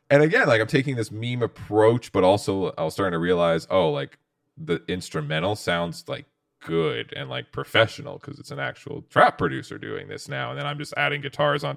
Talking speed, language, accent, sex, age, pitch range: 210 wpm, English, American, male, 20-39, 105-145 Hz